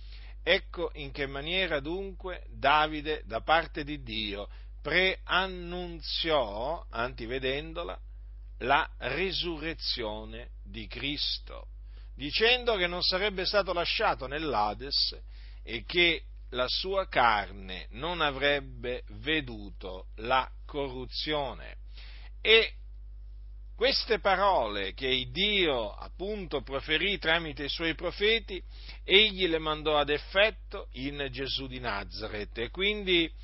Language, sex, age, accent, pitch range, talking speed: Italian, male, 50-69, native, 115-175 Hz, 100 wpm